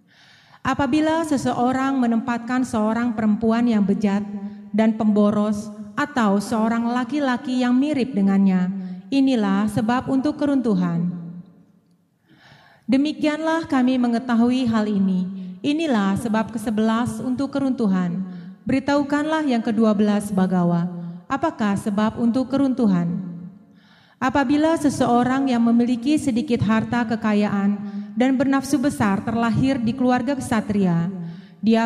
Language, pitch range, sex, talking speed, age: Indonesian, 200-260 Hz, female, 100 wpm, 30-49